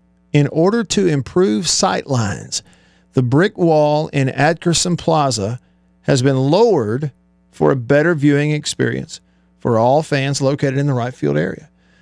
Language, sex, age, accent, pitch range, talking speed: English, male, 50-69, American, 105-155 Hz, 145 wpm